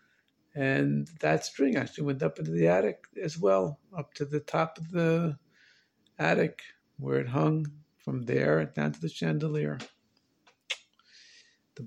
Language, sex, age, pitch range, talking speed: English, male, 50-69, 120-175 Hz, 140 wpm